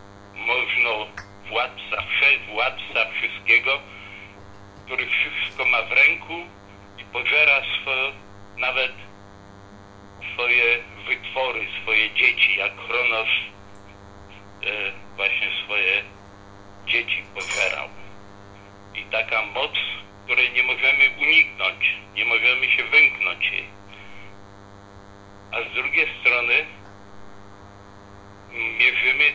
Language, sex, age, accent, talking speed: Polish, male, 60-79, native, 85 wpm